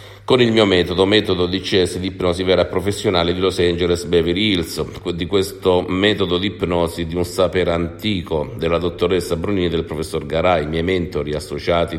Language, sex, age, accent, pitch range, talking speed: Italian, male, 50-69, native, 85-100 Hz, 175 wpm